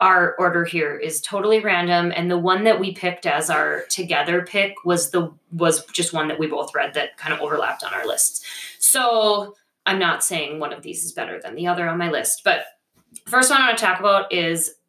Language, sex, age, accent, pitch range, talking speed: English, female, 20-39, American, 170-205 Hz, 225 wpm